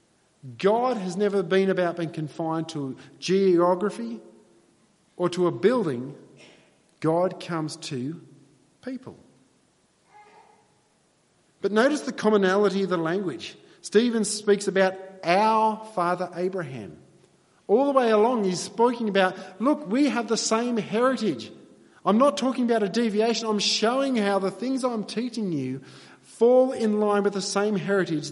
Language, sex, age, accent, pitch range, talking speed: English, male, 50-69, Australian, 175-215 Hz, 135 wpm